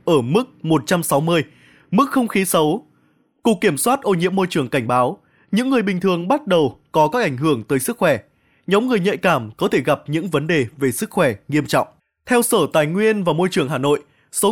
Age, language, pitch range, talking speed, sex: 20-39, Vietnamese, 150-200 Hz, 225 wpm, male